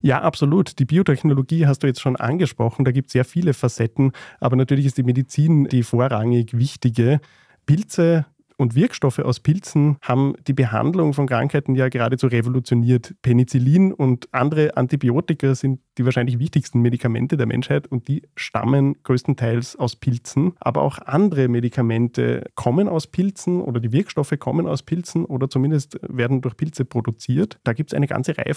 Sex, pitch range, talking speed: male, 125-155 Hz, 165 wpm